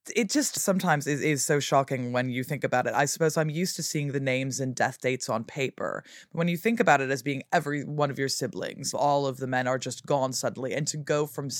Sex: female